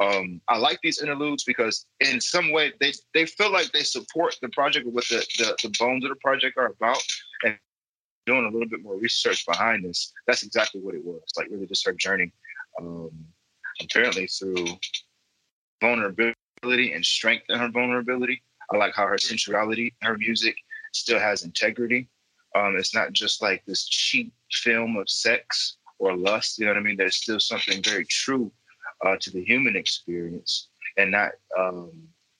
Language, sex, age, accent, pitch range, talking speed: English, male, 20-39, American, 100-135 Hz, 180 wpm